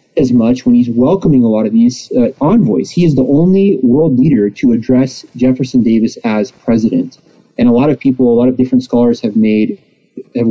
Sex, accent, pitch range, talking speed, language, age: male, American, 120-165 Hz, 205 wpm, English, 30-49